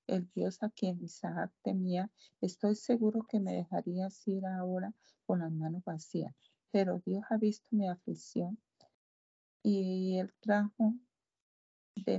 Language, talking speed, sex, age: Spanish, 130 wpm, female, 50-69